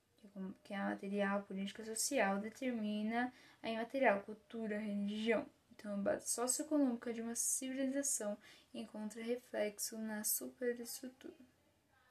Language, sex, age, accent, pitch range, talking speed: English, female, 10-29, Brazilian, 210-265 Hz, 120 wpm